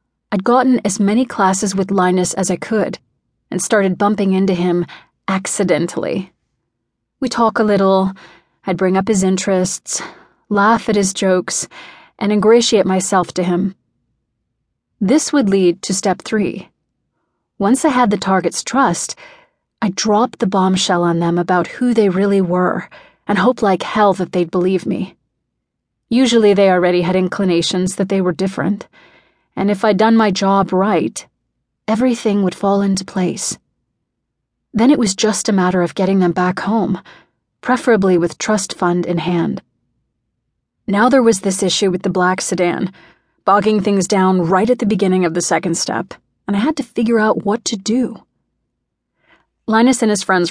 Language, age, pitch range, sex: English, 30-49, 185-220 Hz, female